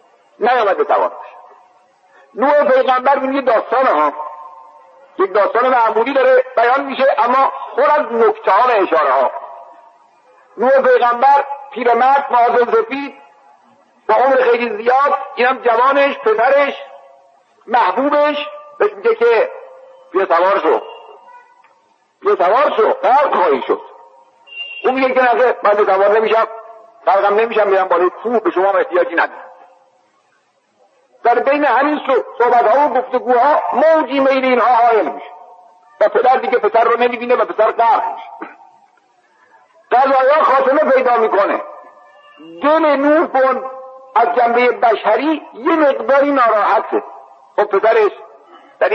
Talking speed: 120 wpm